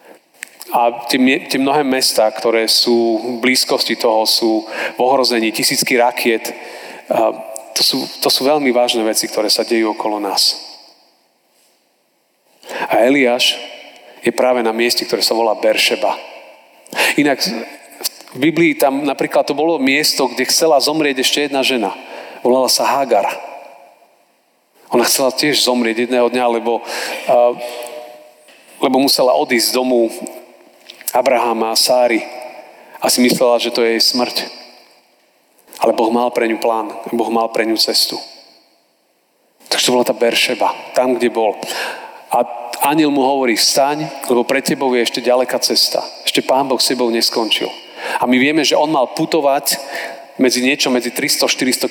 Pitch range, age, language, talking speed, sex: 115-130 Hz, 40-59, Slovak, 145 wpm, male